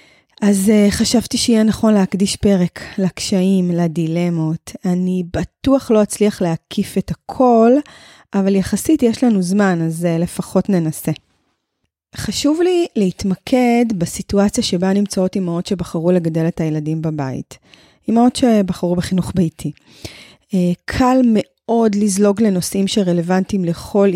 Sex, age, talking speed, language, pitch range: female, 20-39, 120 wpm, Hebrew, 175-220 Hz